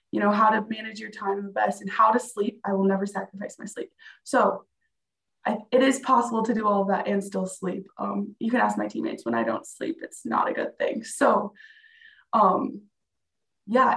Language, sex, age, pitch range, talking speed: English, female, 20-39, 200-255 Hz, 215 wpm